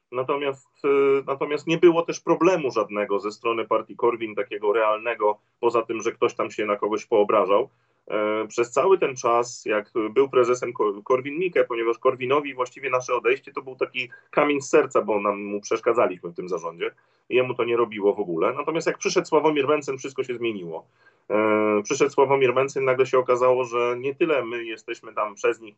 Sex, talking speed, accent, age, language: male, 175 wpm, native, 40-59, Polish